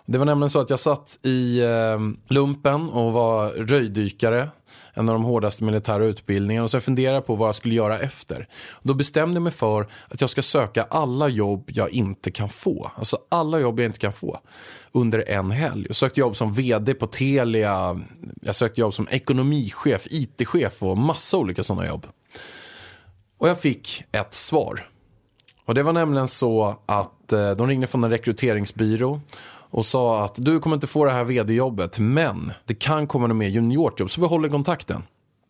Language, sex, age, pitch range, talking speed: Swedish, male, 20-39, 110-140 Hz, 180 wpm